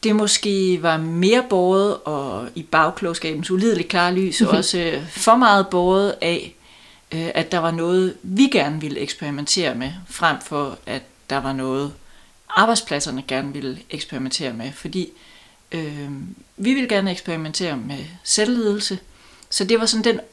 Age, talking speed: 30-49, 140 wpm